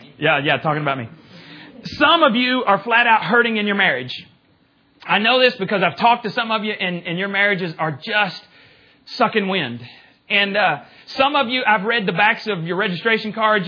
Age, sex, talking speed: 30-49, male, 200 wpm